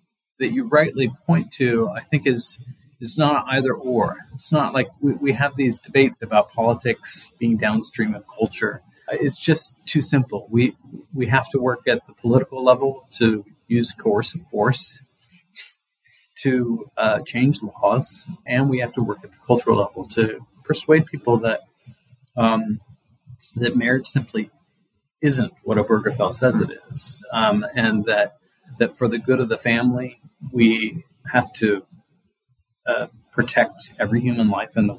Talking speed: 155 wpm